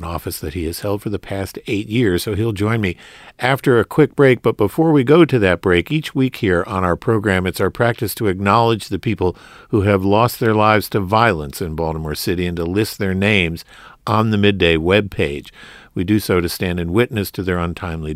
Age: 50-69